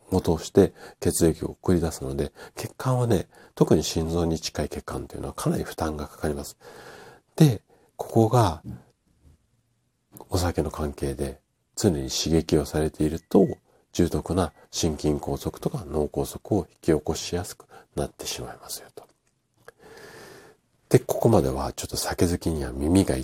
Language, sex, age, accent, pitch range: Japanese, male, 50-69, native, 75-115 Hz